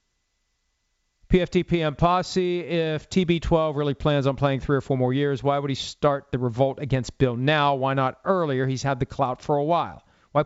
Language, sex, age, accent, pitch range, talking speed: English, male, 40-59, American, 135-190 Hz, 195 wpm